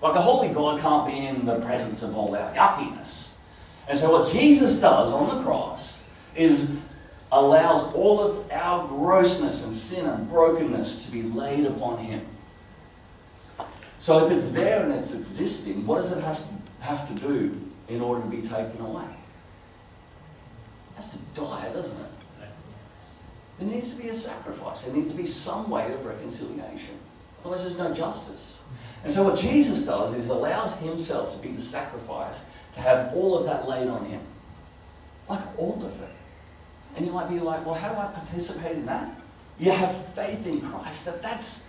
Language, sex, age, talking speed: English, male, 40-59, 175 wpm